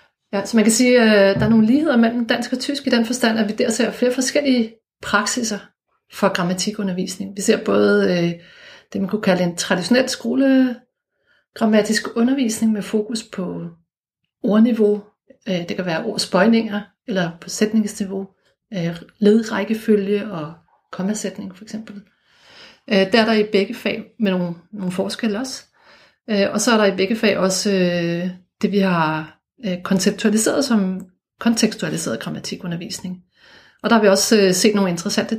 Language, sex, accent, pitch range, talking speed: Danish, female, native, 185-225 Hz, 145 wpm